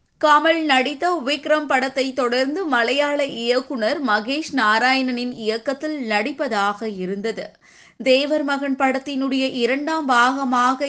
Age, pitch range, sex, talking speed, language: 20-39, 235-290 Hz, female, 95 wpm, Tamil